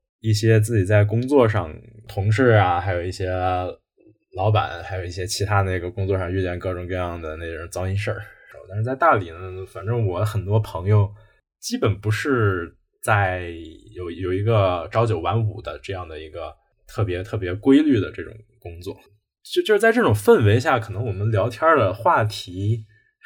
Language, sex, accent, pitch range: Chinese, male, native, 95-115 Hz